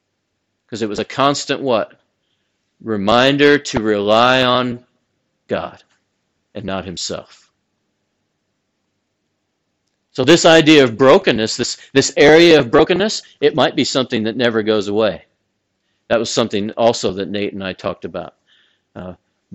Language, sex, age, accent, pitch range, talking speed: English, male, 40-59, American, 105-130 Hz, 130 wpm